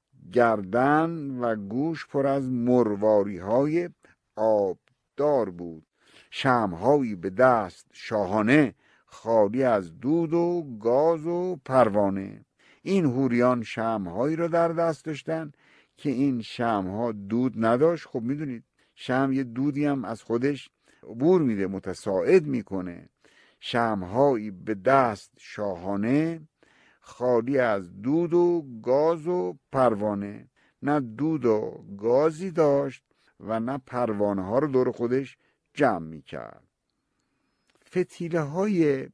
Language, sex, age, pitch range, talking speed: Persian, male, 50-69, 110-150 Hz, 110 wpm